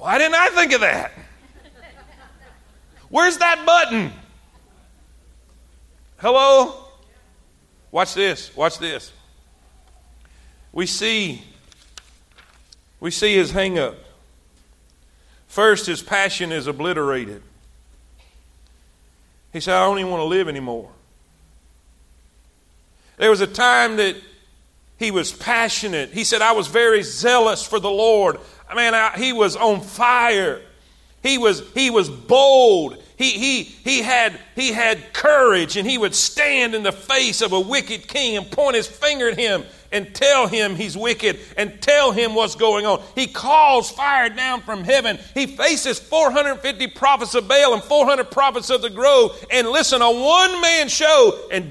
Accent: American